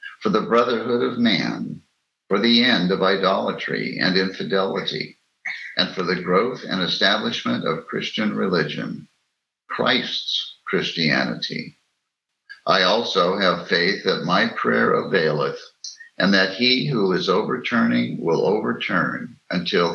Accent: American